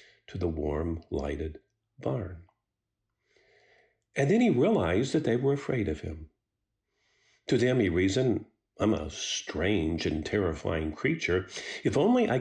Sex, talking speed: male, 135 wpm